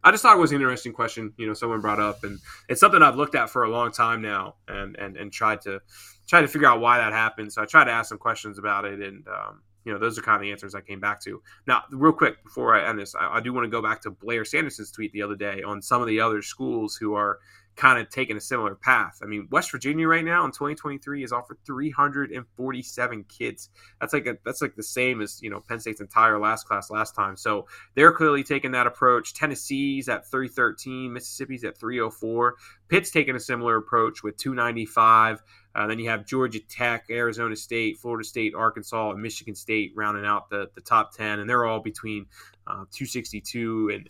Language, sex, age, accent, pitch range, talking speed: English, male, 20-39, American, 105-125 Hz, 230 wpm